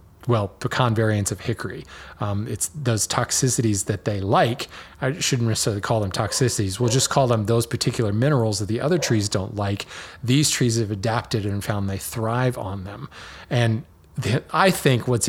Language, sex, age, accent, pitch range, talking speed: English, male, 20-39, American, 105-145 Hz, 175 wpm